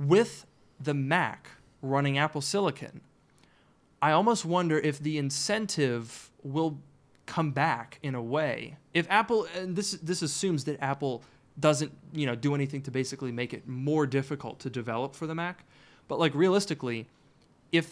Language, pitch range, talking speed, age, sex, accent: English, 135-165 Hz, 155 wpm, 20-39, male, American